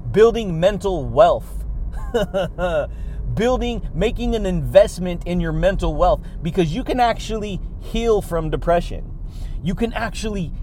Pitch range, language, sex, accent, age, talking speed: 165-210 Hz, English, male, American, 30-49, 120 wpm